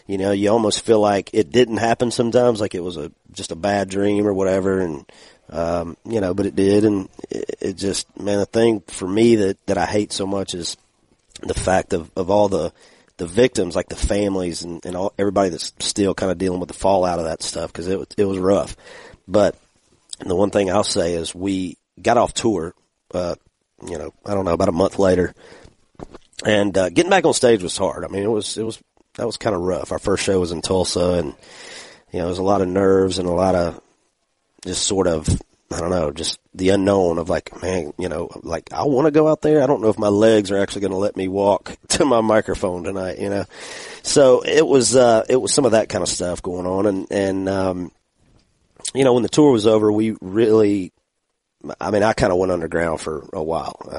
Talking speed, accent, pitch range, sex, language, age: 235 wpm, American, 90-110 Hz, male, English, 40-59